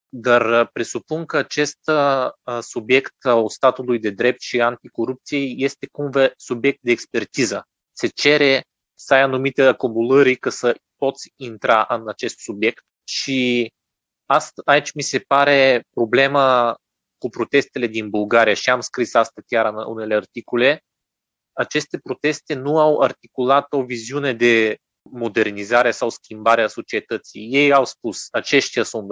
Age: 20-39